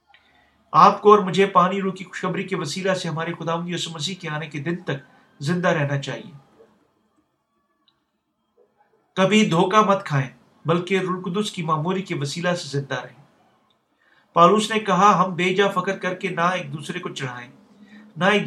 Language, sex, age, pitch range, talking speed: Urdu, male, 50-69, 160-190 Hz, 165 wpm